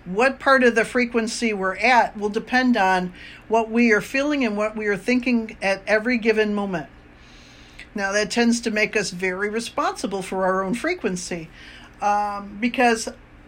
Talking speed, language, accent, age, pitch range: 165 wpm, English, American, 50-69, 195-240 Hz